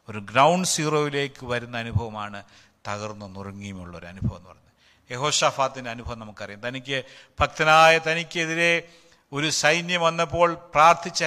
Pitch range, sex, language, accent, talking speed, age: 115-170 Hz, male, Malayalam, native, 105 wpm, 50-69